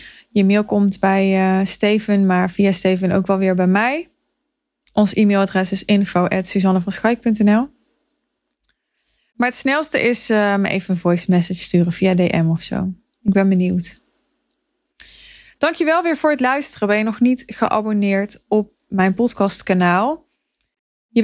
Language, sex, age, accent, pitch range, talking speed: Dutch, female, 20-39, Dutch, 190-230 Hz, 140 wpm